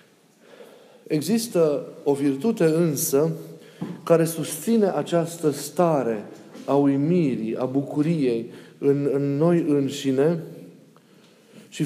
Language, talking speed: Romanian, 85 wpm